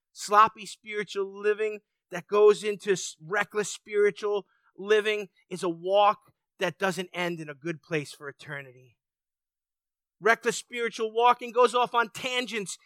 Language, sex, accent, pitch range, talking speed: English, male, American, 190-280 Hz, 130 wpm